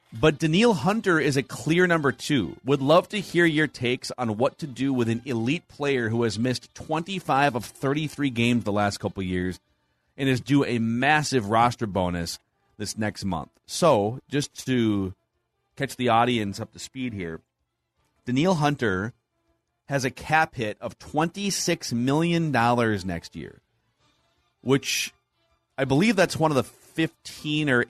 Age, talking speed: 30-49, 155 wpm